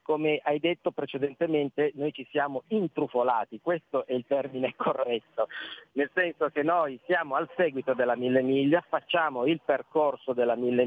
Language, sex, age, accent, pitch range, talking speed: Italian, male, 40-59, native, 130-160 Hz, 155 wpm